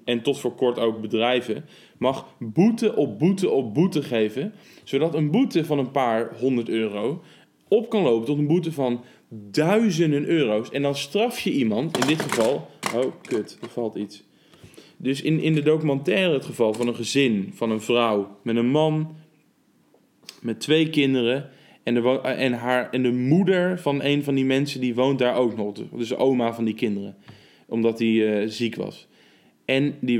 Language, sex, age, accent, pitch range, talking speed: Dutch, male, 20-39, Dutch, 120-155 Hz, 185 wpm